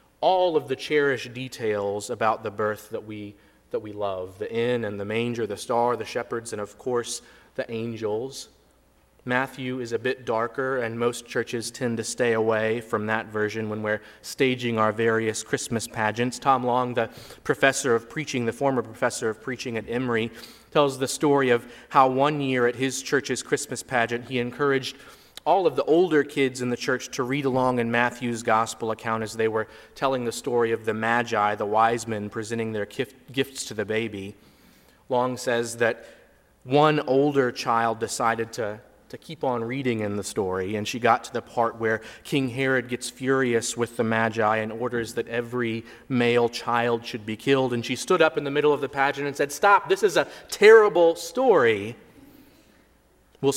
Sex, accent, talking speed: male, American, 185 wpm